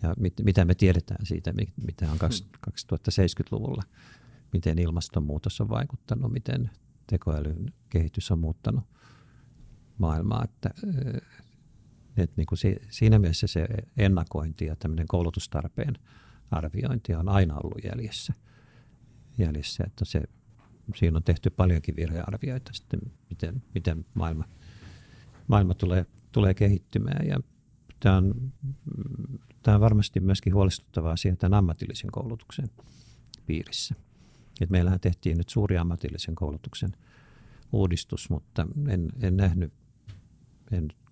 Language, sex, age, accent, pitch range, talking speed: Finnish, male, 50-69, native, 90-120 Hz, 110 wpm